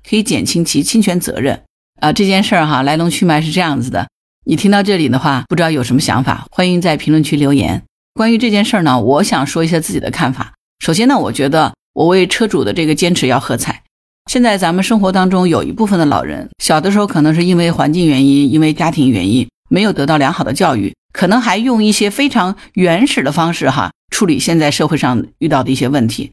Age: 50-69